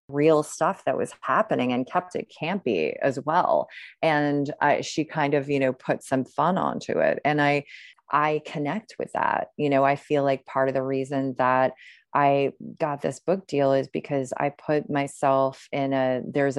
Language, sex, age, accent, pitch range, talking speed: English, female, 30-49, American, 135-165 Hz, 190 wpm